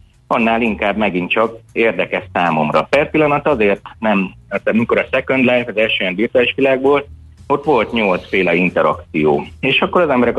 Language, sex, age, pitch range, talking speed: Hungarian, male, 30-49, 95-135 Hz, 160 wpm